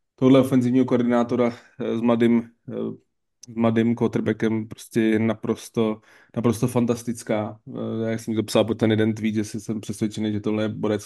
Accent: native